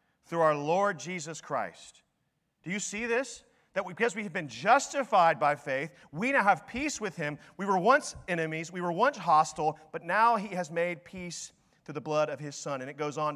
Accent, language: American, English